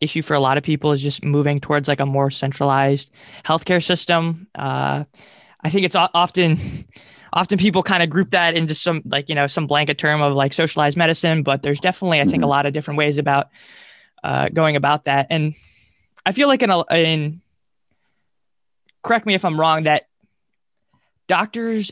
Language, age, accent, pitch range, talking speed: English, 20-39, American, 145-165 Hz, 185 wpm